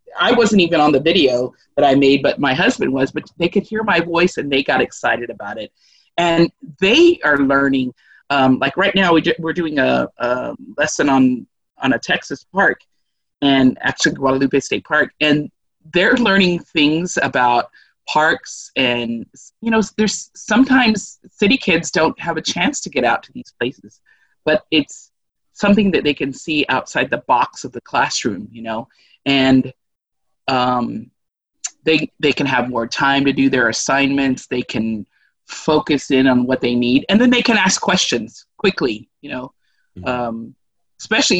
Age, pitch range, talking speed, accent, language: 30-49, 130-180 Hz, 170 wpm, American, English